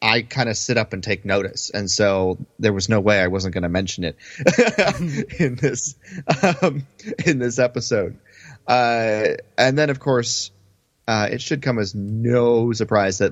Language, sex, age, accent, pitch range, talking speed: English, male, 30-49, American, 95-125 Hz, 175 wpm